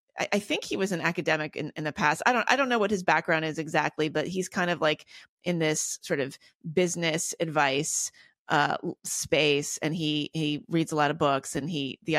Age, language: 30-49, English